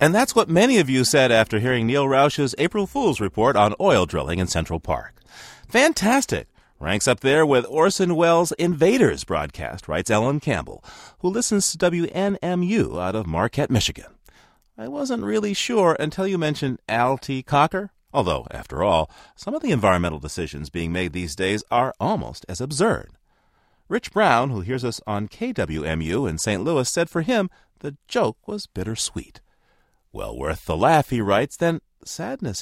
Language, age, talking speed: English, 40-59, 165 wpm